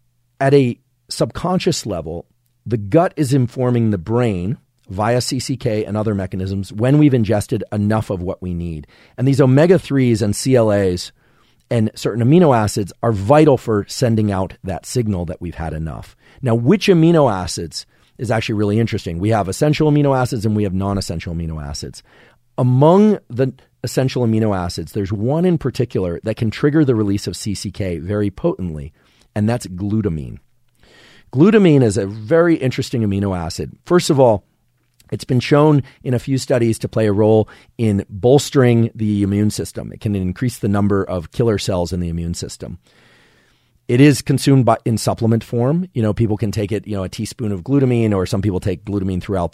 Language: English